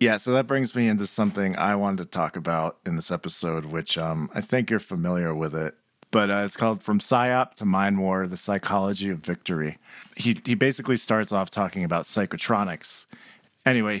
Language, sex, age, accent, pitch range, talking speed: English, male, 40-59, American, 90-115 Hz, 195 wpm